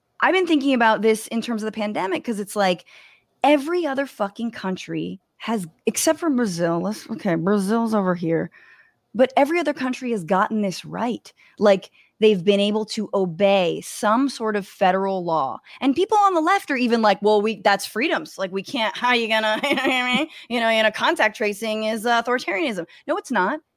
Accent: American